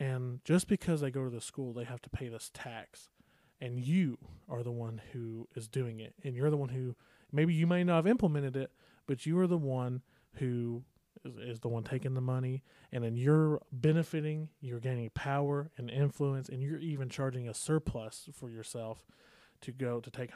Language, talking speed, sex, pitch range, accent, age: English, 205 wpm, male, 125-165 Hz, American, 30-49